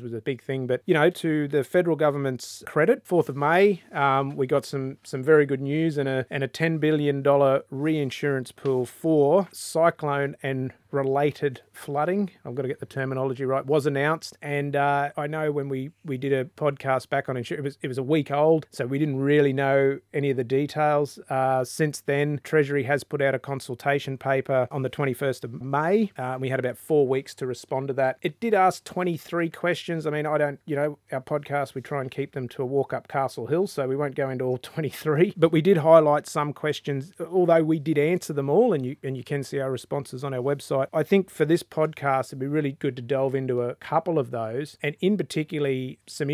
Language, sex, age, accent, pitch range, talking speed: English, male, 30-49, Australian, 130-155 Hz, 225 wpm